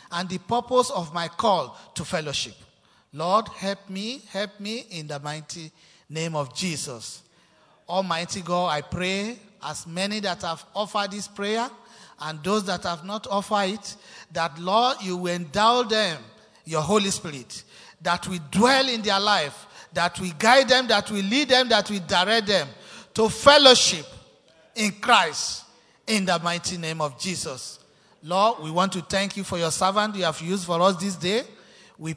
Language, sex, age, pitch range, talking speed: English, male, 50-69, 170-215 Hz, 170 wpm